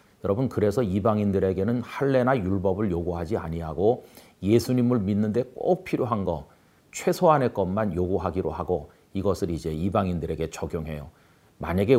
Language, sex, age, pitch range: Korean, male, 40-59, 85-110 Hz